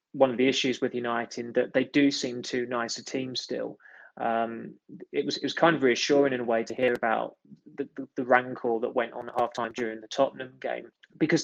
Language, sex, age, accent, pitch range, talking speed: English, male, 20-39, British, 115-140 Hz, 225 wpm